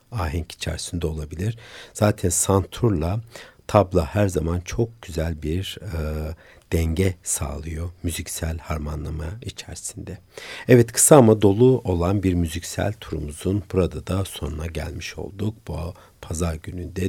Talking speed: 115 wpm